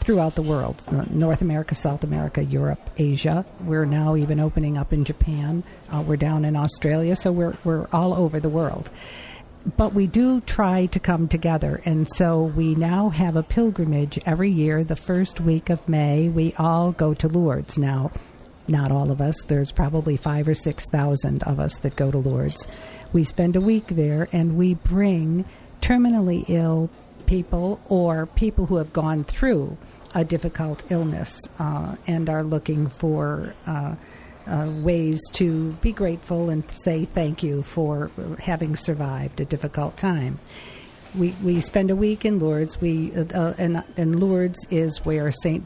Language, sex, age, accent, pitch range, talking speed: English, female, 50-69, American, 150-175 Hz, 170 wpm